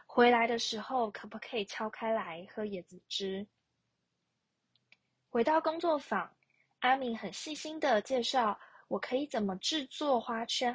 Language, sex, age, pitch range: Chinese, female, 20-39, 210-260 Hz